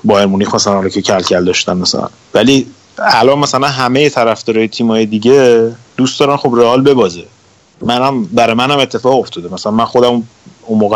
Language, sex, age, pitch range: Persian, male, 30-49, 105-130 Hz